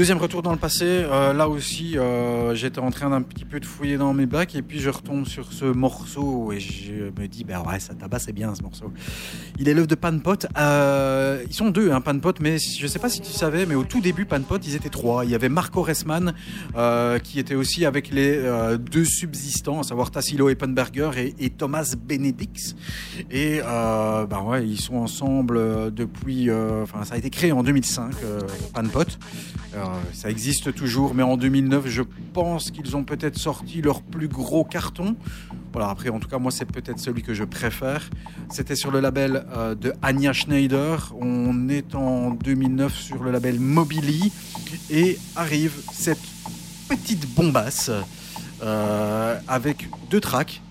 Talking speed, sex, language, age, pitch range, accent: 190 wpm, male, French, 30-49, 125-160 Hz, French